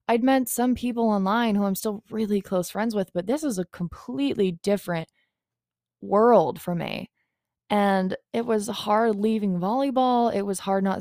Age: 20-39